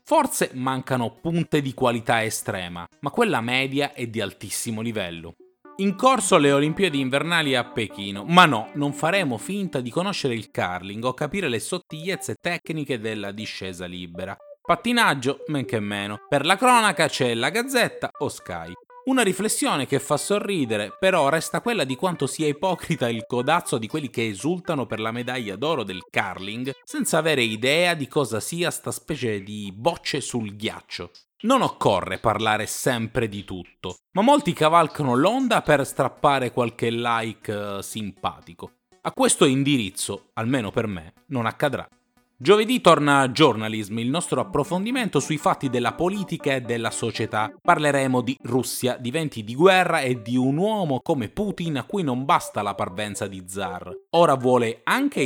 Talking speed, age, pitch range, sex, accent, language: 160 wpm, 30-49, 115-175 Hz, male, native, Italian